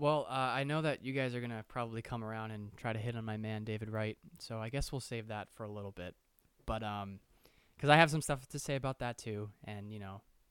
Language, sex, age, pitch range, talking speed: English, male, 20-39, 105-135 Hz, 270 wpm